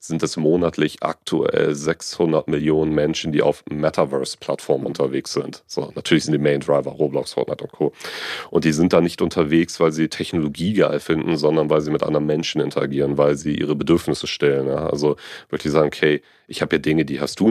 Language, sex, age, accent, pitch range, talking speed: German, male, 40-59, German, 75-80 Hz, 190 wpm